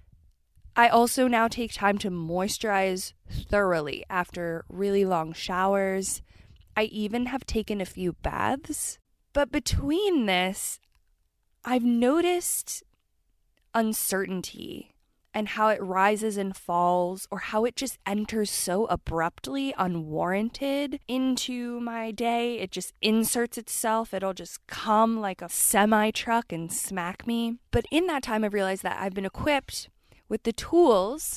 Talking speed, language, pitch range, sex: 130 wpm, English, 190-240 Hz, female